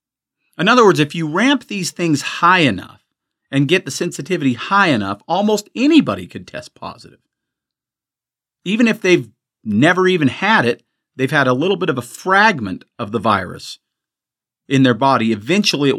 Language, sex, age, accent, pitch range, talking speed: English, male, 40-59, American, 125-210 Hz, 165 wpm